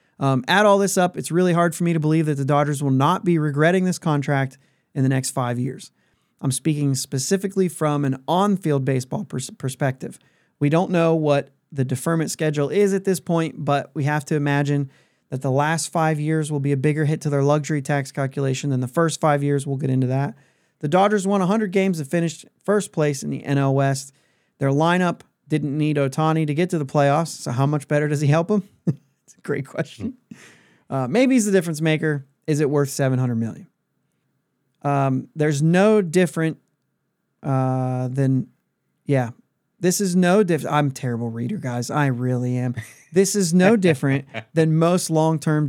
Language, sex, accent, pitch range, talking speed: English, male, American, 135-170 Hz, 190 wpm